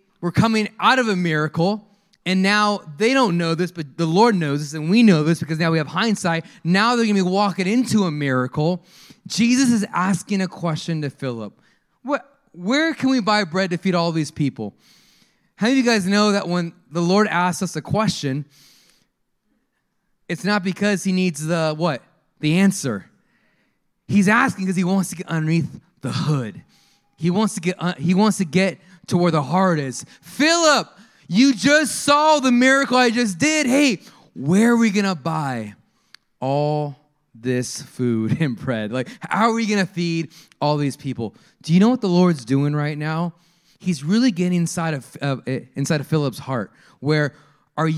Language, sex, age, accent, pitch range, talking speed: English, male, 20-39, American, 150-210 Hz, 185 wpm